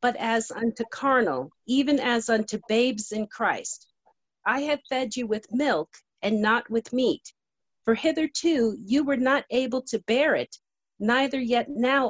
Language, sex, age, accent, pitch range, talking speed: English, female, 40-59, American, 215-270 Hz, 160 wpm